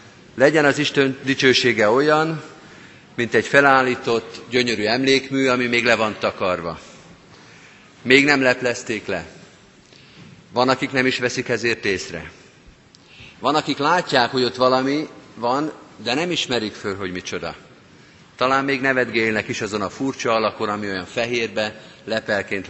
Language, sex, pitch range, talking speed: Hungarian, male, 110-135 Hz, 135 wpm